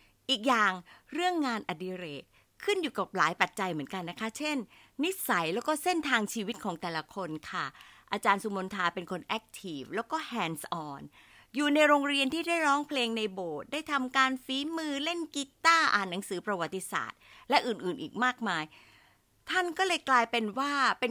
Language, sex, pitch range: Thai, female, 185-270 Hz